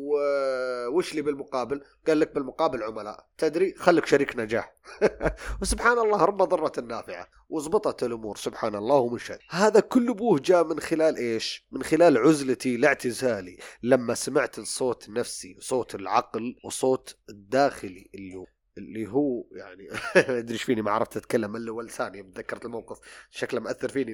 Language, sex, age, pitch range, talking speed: Arabic, male, 30-49, 125-160 Hz, 140 wpm